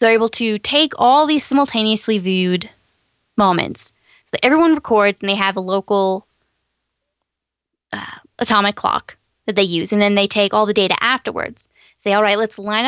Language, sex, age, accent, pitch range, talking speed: English, female, 10-29, American, 195-235 Hz, 170 wpm